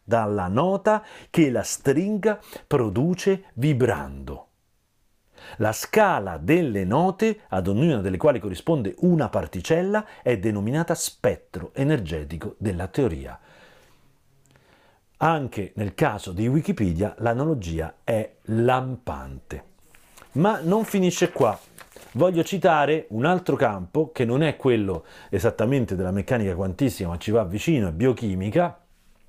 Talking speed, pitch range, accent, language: 115 wpm, 95-160 Hz, native, Italian